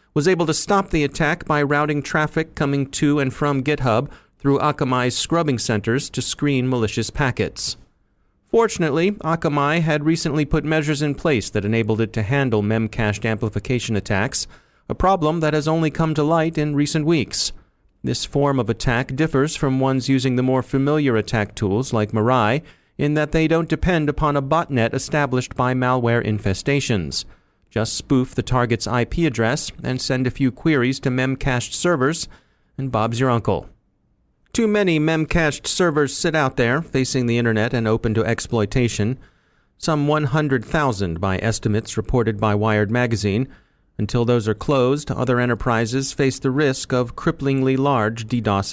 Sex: male